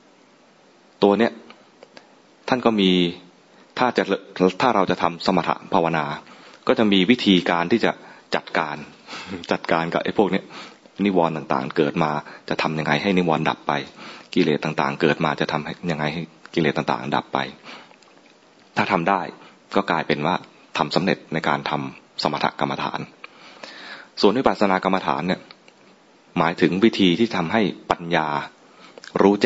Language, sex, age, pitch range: English, male, 20-39, 80-105 Hz